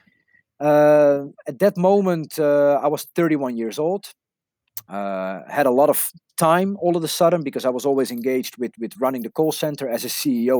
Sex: male